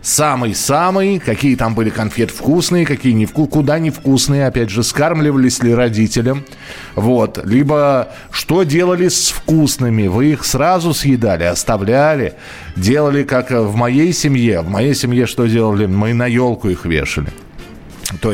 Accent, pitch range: native, 100-140 Hz